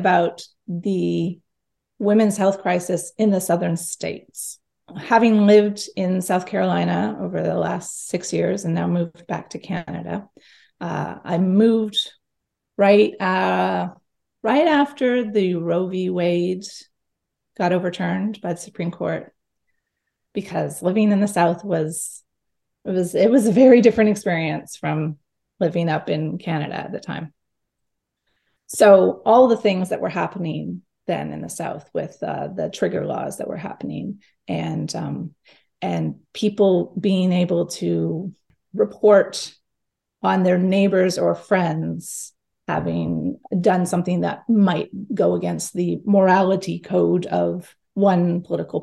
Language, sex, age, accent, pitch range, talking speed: English, female, 30-49, American, 170-200 Hz, 135 wpm